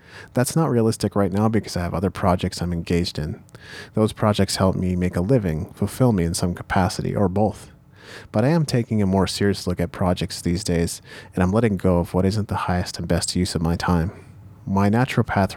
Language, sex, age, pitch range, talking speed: English, male, 30-49, 90-105 Hz, 215 wpm